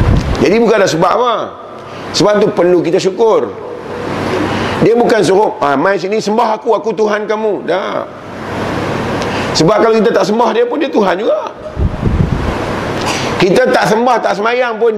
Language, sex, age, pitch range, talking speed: Malay, male, 40-59, 185-225 Hz, 150 wpm